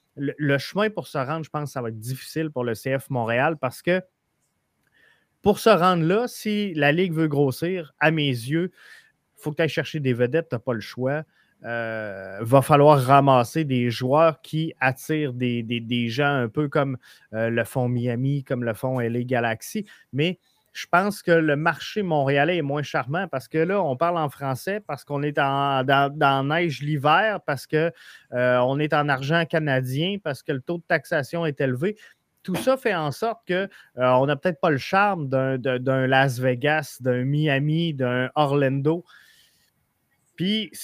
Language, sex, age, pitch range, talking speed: French, male, 30-49, 130-165 Hz, 185 wpm